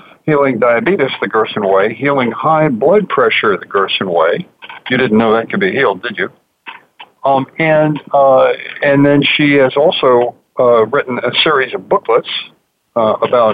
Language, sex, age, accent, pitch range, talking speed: English, male, 60-79, American, 115-145 Hz, 165 wpm